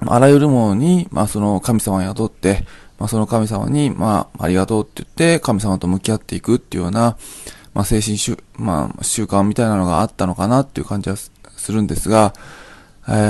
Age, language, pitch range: 20-39, Japanese, 100-125 Hz